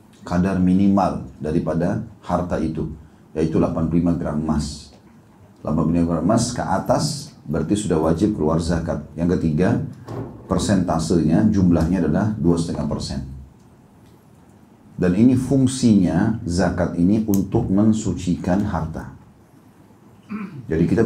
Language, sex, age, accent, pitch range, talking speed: Indonesian, male, 40-59, native, 85-105 Hz, 100 wpm